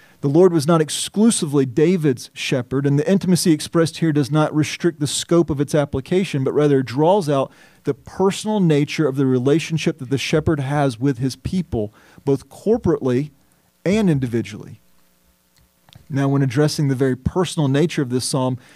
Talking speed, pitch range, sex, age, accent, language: 165 wpm, 135-165 Hz, male, 40-59, American, English